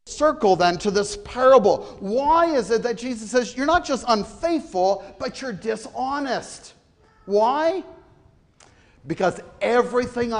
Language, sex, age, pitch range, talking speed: English, male, 50-69, 150-230 Hz, 120 wpm